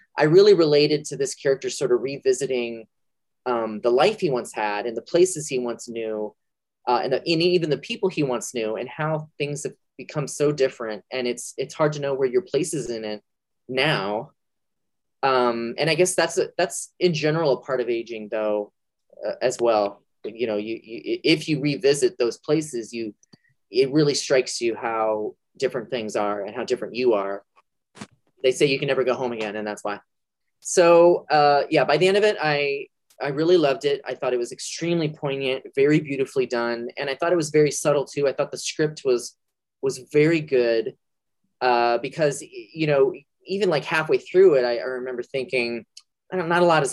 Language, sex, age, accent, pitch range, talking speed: English, male, 30-49, American, 120-165 Hz, 205 wpm